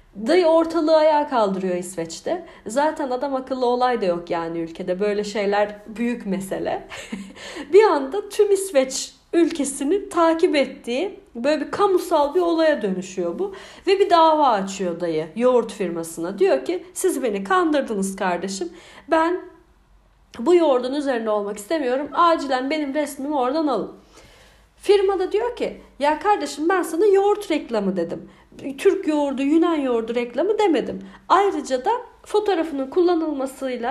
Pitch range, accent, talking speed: 210-335 Hz, native, 135 wpm